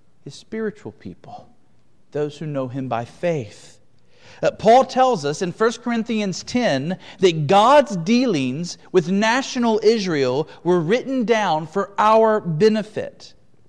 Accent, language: American, English